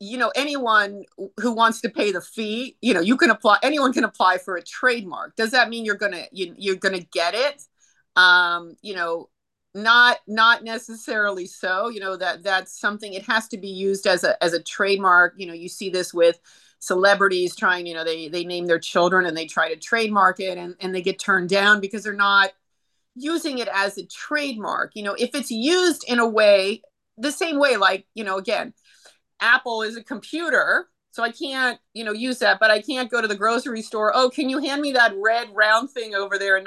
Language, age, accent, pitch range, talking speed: English, 30-49, American, 185-230 Hz, 220 wpm